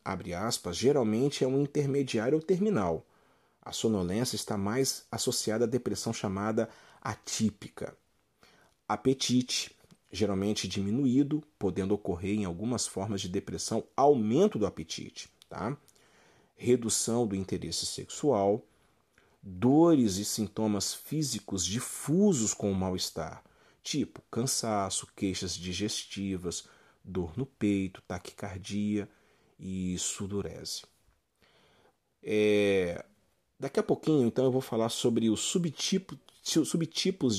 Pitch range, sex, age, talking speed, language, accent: 95-130 Hz, male, 40-59, 100 wpm, Portuguese, Brazilian